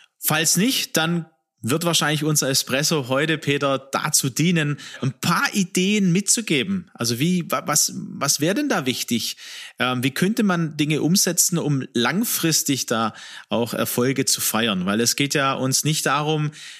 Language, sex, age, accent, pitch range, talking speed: German, male, 30-49, German, 130-165 Hz, 150 wpm